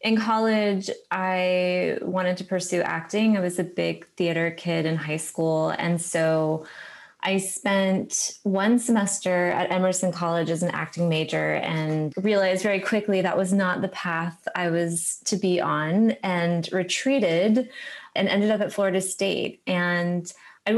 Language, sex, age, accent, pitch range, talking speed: English, female, 20-39, American, 170-195 Hz, 155 wpm